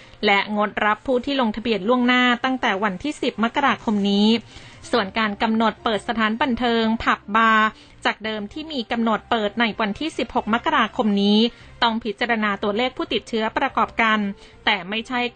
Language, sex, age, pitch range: Thai, female, 20-39, 215-250 Hz